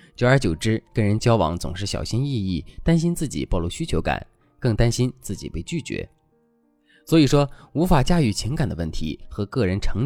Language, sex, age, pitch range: Chinese, male, 20-39, 90-135 Hz